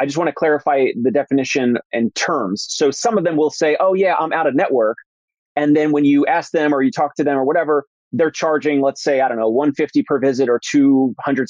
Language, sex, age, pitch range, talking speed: English, male, 30-49, 130-150 Hz, 250 wpm